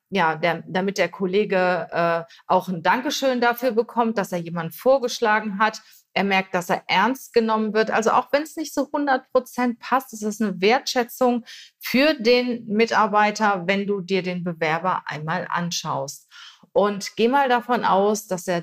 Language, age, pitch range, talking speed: German, 30-49, 175-220 Hz, 170 wpm